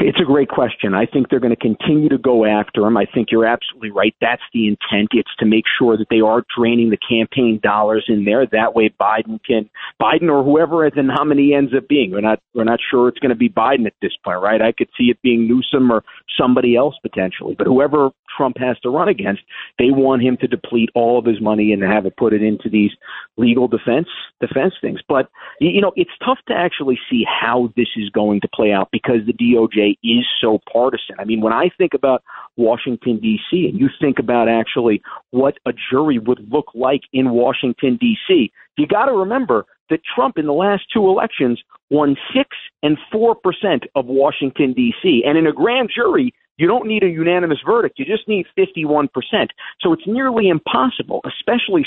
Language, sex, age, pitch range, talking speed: English, male, 50-69, 115-170 Hz, 210 wpm